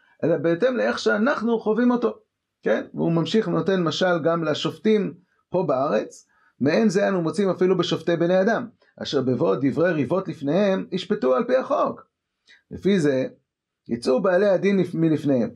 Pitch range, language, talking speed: 160-215 Hz, Hebrew, 145 wpm